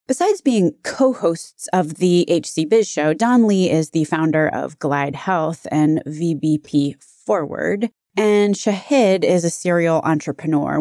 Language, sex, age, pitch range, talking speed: English, female, 20-39, 150-210 Hz, 140 wpm